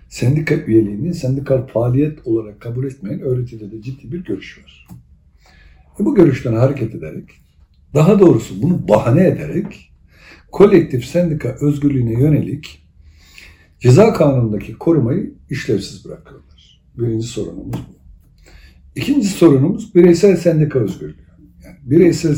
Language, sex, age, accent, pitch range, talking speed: Turkish, male, 60-79, native, 100-160 Hz, 115 wpm